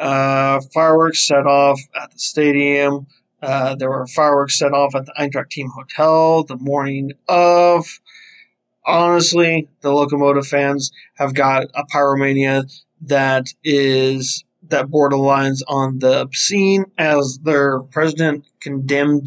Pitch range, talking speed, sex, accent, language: 135-150 Hz, 120 wpm, male, American, English